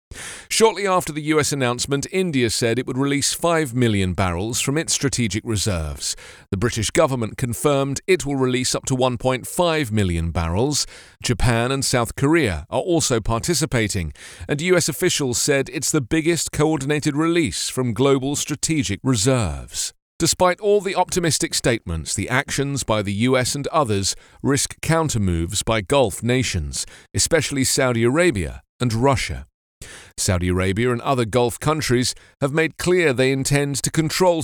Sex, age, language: male, 40-59, English